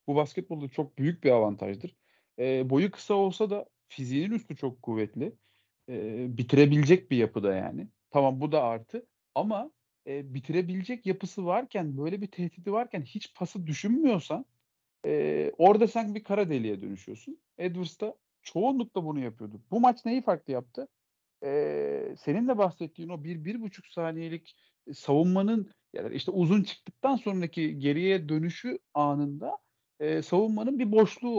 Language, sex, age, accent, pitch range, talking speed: Turkish, male, 40-59, native, 140-210 Hz, 145 wpm